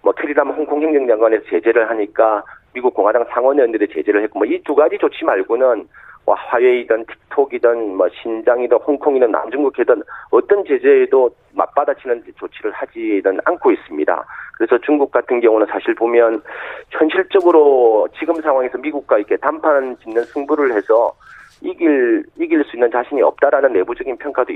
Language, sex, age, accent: Korean, male, 40-59, native